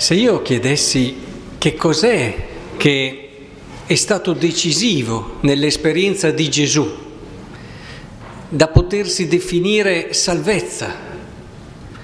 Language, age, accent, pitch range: Italian, 50-69, native, 145-195 Hz